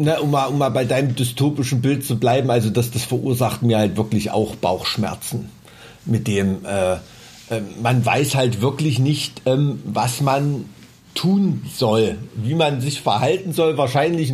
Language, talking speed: German, 165 wpm